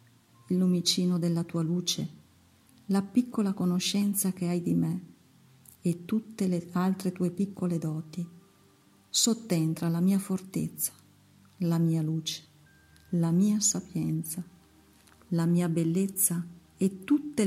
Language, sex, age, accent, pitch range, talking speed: Italian, female, 40-59, native, 150-185 Hz, 115 wpm